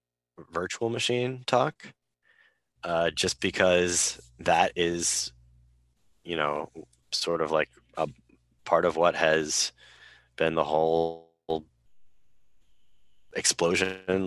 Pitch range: 80-95 Hz